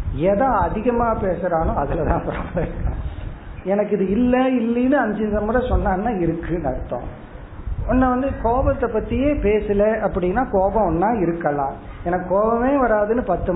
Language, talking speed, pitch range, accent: Tamil, 115 wpm, 170-230 Hz, native